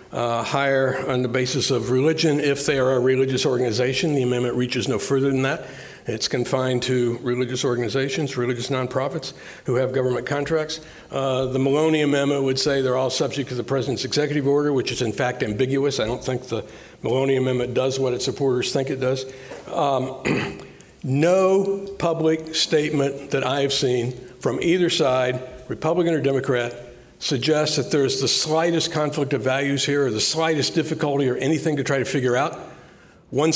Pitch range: 130-160 Hz